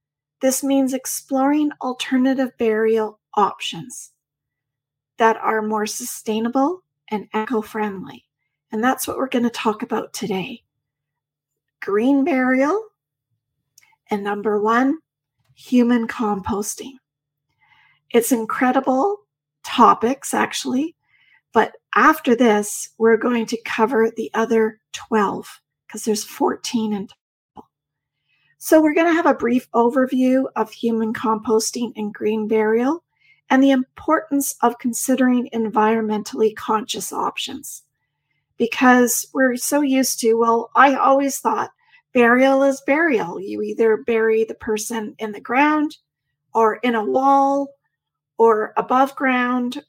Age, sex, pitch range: 40-59, female, 210-260 Hz